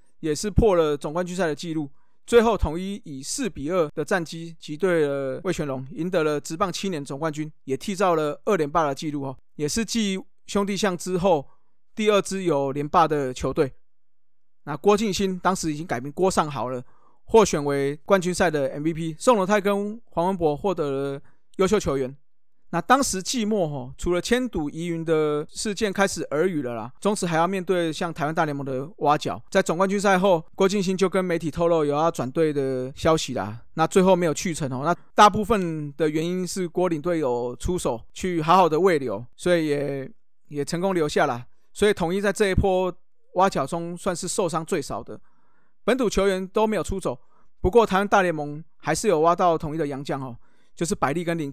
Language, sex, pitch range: Chinese, male, 150-195 Hz